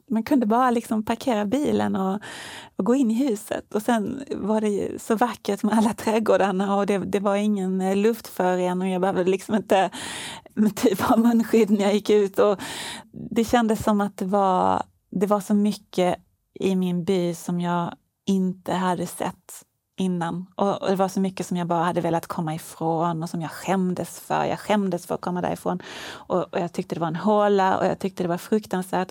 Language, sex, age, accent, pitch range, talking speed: Swedish, female, 30-49, native, 185-215 Hz, 205 wpm